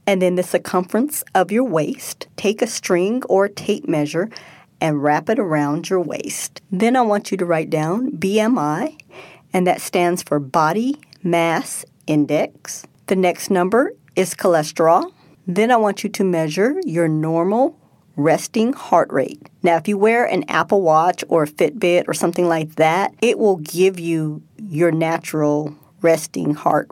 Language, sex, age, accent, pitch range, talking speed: English, female, 40-59, American, 160-205 Hz, 160 wpm